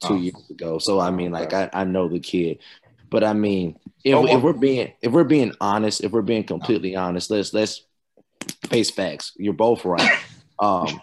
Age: 20-39